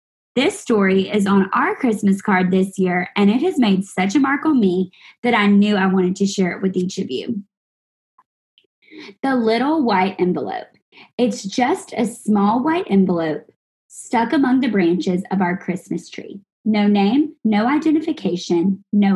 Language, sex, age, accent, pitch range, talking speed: English, female, 20-39, American, 195-275 Hz, 165 wpm